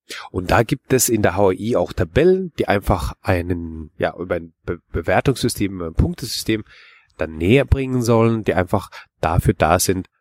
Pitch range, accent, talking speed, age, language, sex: 90-115 Hz, German, 160 wpm, 30-49, German, male